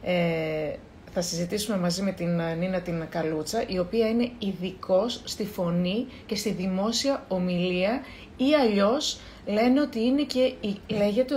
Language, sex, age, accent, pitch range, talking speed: Greek, female, 30-49, native, 190-275 Hz, 135 wpm